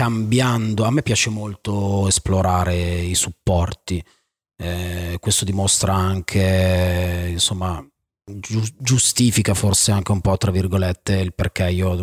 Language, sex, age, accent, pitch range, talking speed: Italian, male, 30-49, native, 95-110 Hz, 120 wpm